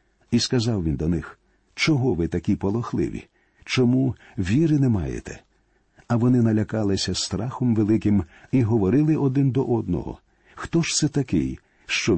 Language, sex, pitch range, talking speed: Ukrainian, male, 105-135 Hz, 140 wpm